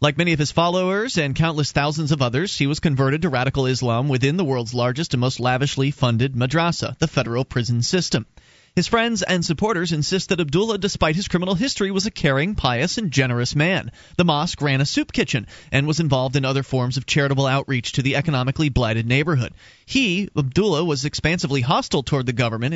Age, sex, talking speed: 30-49, male, 200 wpm